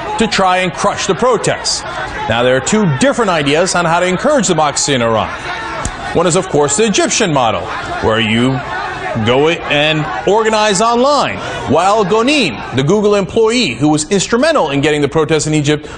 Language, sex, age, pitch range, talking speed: English, male, 30-49, 155-240 Hz, 175 wpm